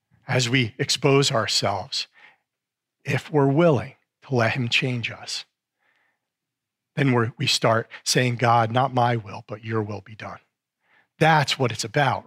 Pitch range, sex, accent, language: 120-155 Hz, male, American, English